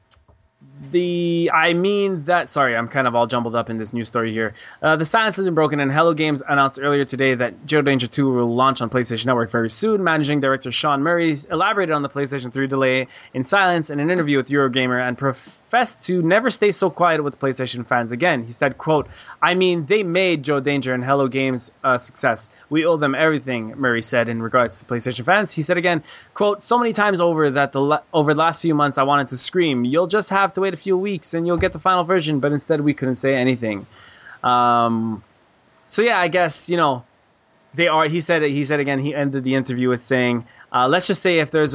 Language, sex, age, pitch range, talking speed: English, male, 20-39, 125-165 Hz, 225 wpm